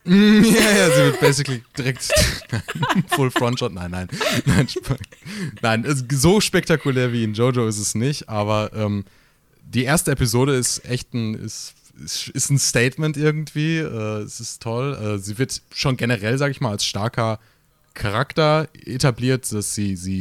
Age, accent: 30-49, German